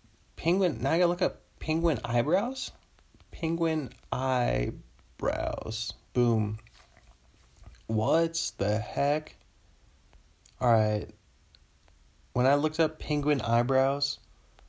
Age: 20-39